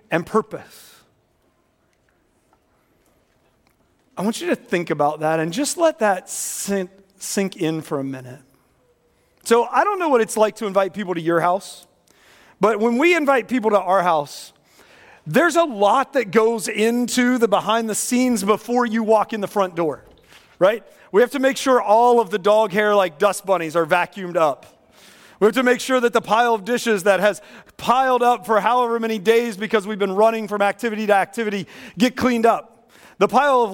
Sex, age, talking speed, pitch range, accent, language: male, 40-59, 185 wpm, 195-245 Hz, American, English